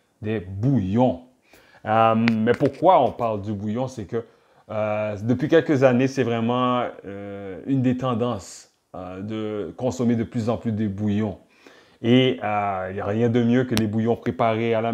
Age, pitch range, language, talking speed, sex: 30-49, 110-135 Hz, French, 175 wpm, male